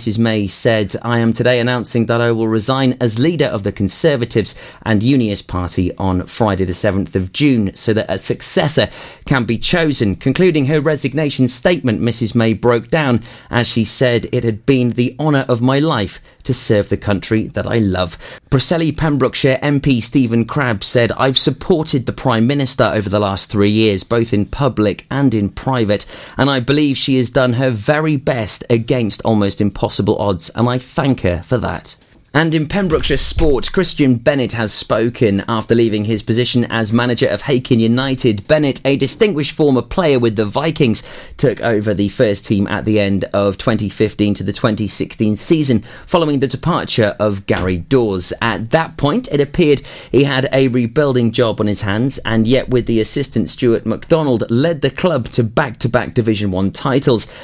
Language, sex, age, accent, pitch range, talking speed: English, male, 30-49, British, 105-135 Hz, 180 wpm